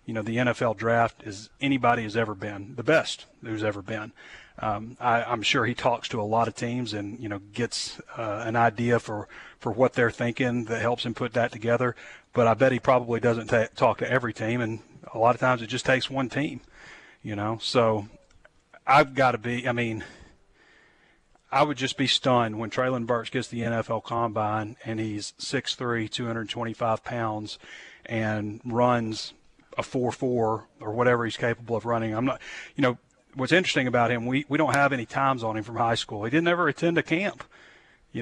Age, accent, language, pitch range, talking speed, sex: 40-59, American, English, 110-130 Hz, 195 wpm, male